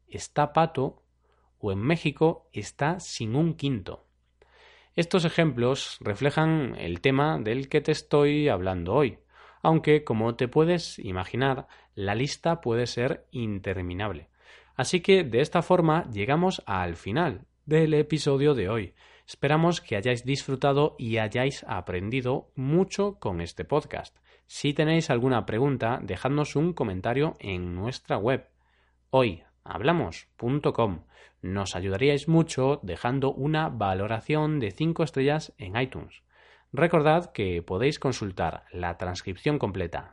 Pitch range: 100-150 Hz